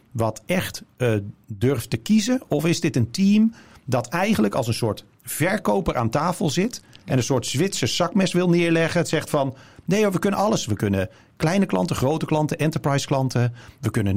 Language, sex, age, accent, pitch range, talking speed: Dutch, male, 40-59, Dutch, 110-160 Hz, 185 wpm